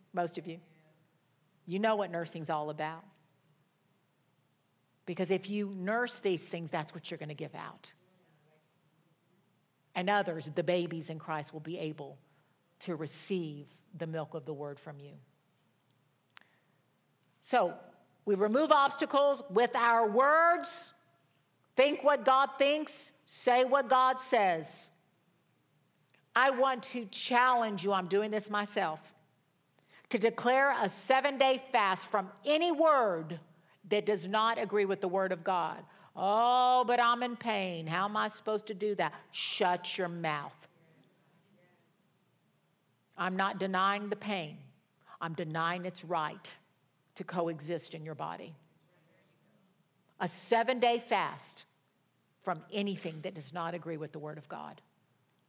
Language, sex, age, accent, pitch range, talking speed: English, female, 50-69, American, 160-215 Hz, 135 wpm